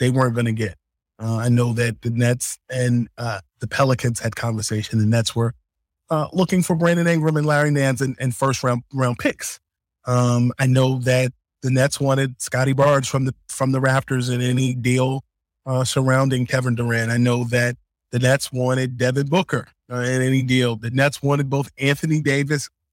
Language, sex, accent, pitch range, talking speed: English, male, American, 125-150 Hz, 190 wpm